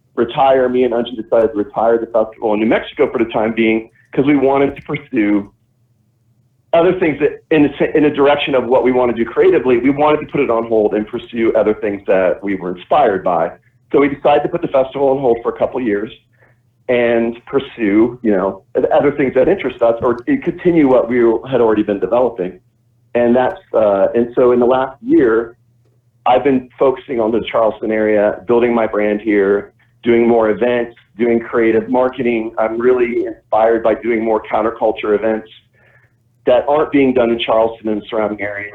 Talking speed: 195 wpm